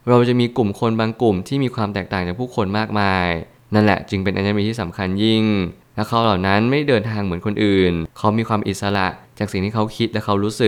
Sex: male